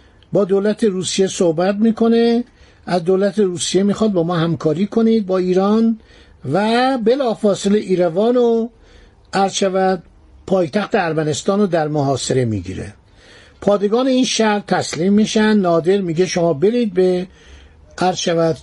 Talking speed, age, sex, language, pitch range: 115 wpm, 60-79, male, Persian, 165-210 Hz